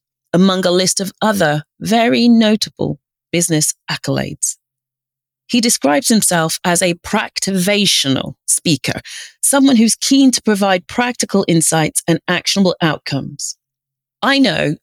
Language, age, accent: English, 30-49, British